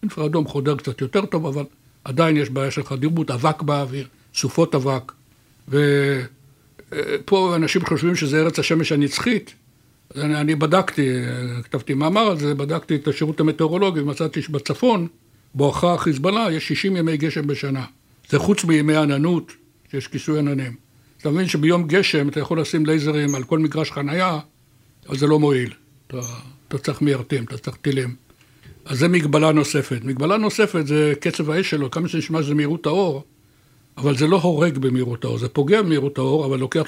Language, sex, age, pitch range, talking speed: Hebrew, male, 60-79, 135-160 Hz, 165 wpm